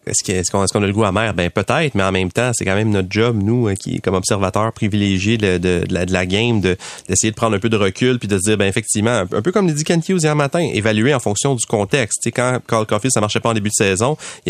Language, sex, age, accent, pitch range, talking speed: French, male, 30-49, Canadian, 95-120 Hz, 305 wpm